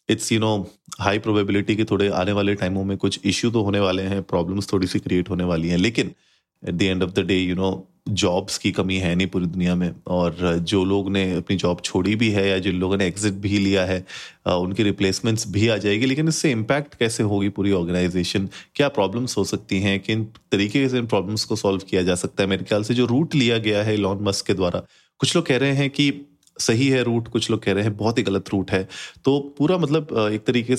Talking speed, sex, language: 235 wpm, male, Hindi